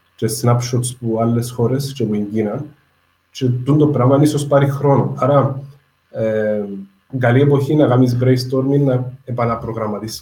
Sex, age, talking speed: male, 30-49, 135 wpm